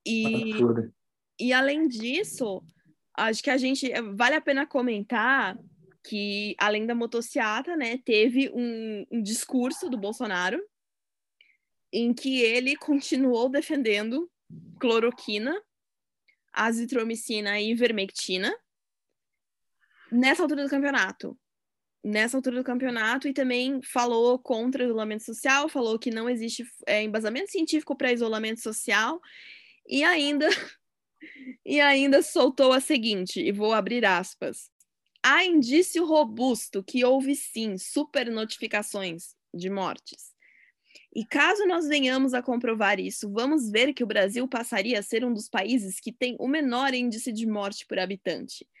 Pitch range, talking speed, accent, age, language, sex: 220-275 Hz, 125 wpm, Brazilian, 10-29, Portuguese, female